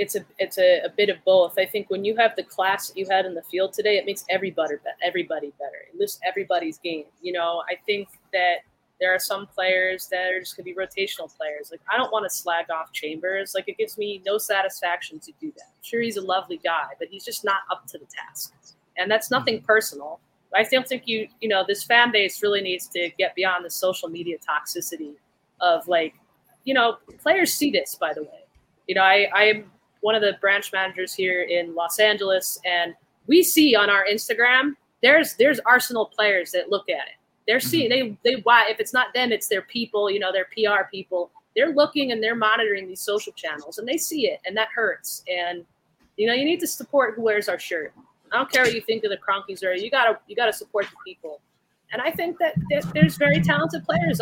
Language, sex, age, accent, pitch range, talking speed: English, female, 30-49, American, 185-235 Hz, 230 wpm